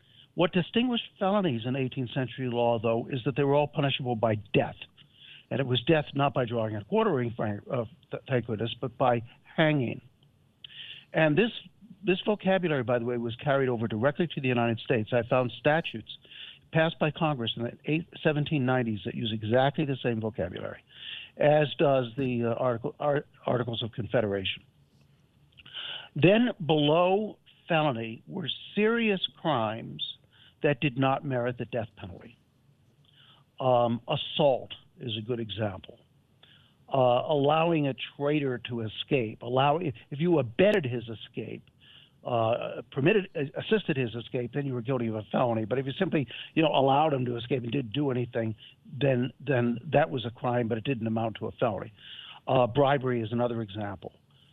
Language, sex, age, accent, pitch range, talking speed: English, male, 60-79, American, 120-150 Hz, 160 wpm